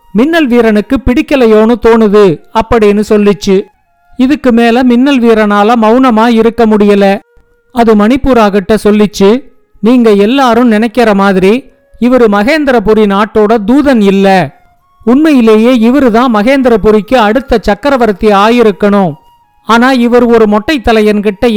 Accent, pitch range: native, 210-255 Hz